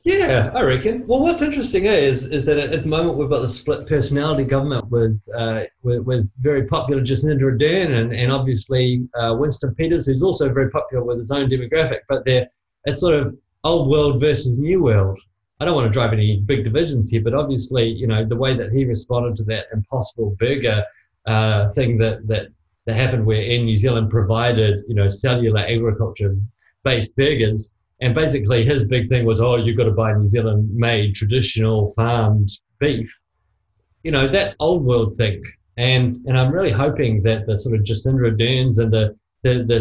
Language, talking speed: English, 190 wpm